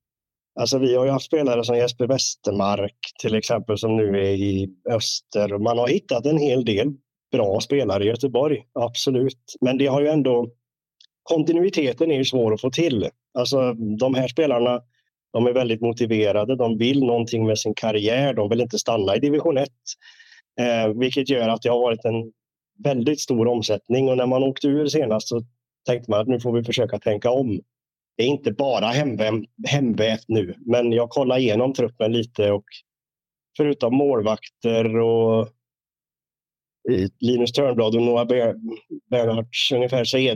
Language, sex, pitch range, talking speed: Swedish, male, 110-135 Hz, 165 wpm